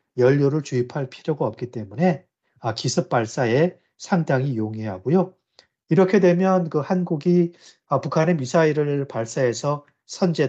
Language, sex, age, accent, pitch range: Korean, male, 30-49, native, 120-155 Hz